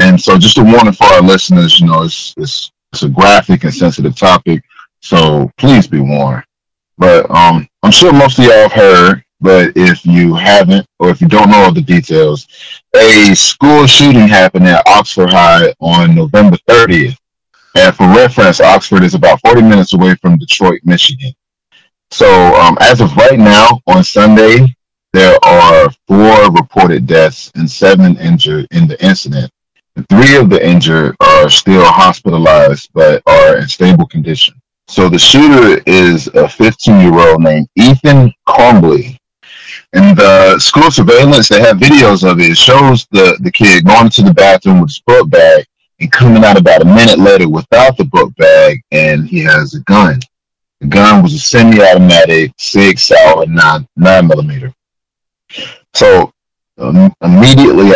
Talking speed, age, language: 165 wpm, 30-49, English